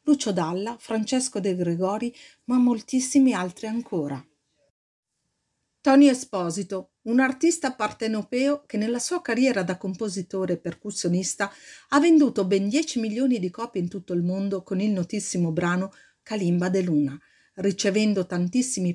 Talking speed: 135 wpm